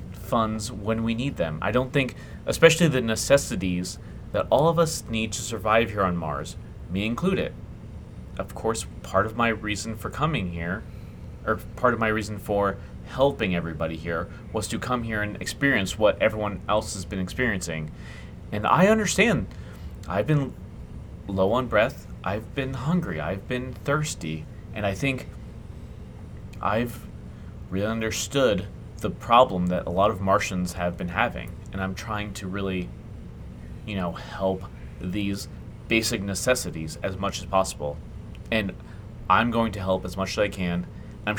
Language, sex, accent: English, male, American